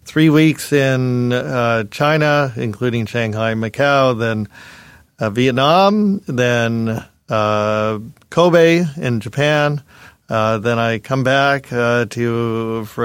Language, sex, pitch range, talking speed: English, male, 115-135 Hz, 110 wpm